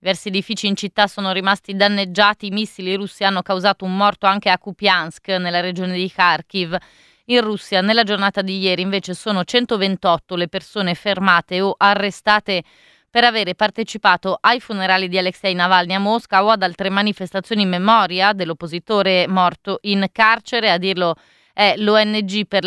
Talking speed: 160 wpm